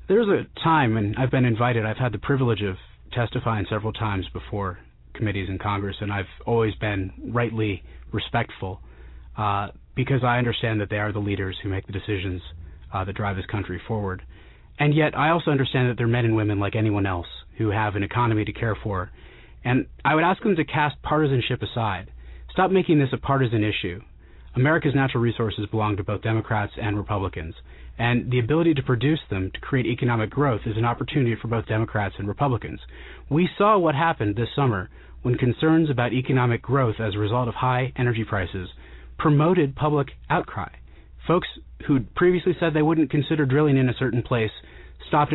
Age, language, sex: 30-49, English, male